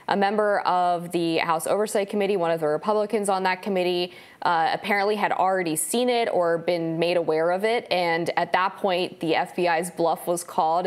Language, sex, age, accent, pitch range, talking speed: English, female, 20-39, American, 165-185 Hz, 195 wpm